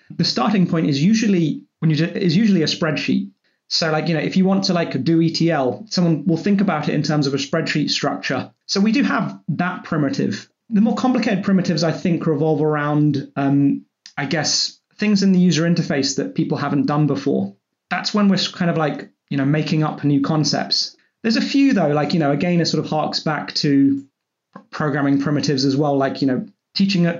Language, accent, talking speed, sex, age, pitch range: English, British, 210 wpm, male, 30-49, 145-190 Hz